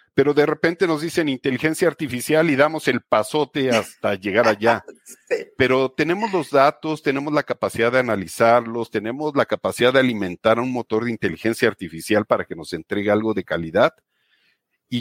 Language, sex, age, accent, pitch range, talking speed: Spanish, male, 50-69, Mexican, 110-155 Hz, 165 wpm